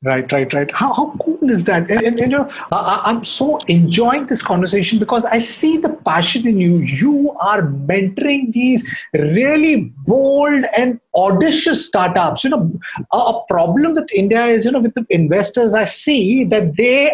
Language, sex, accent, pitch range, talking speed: English, male, Indian, 200-270 Hz, 170 wpm